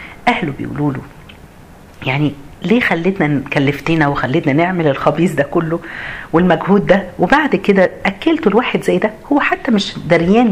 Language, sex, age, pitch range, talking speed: Arabic, female, 50-69, 135-195 Hz, 135 wpm